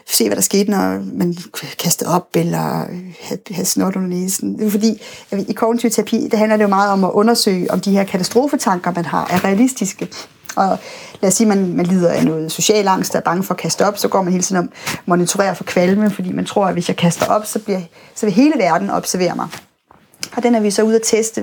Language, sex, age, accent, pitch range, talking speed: Danish, female, 30-49, native, 180-220 Hz, 235 wpm